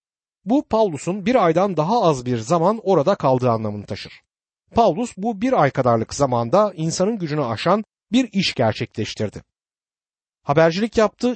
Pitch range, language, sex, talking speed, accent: 130-210 Hz, Turkish, male, 135 wpm, native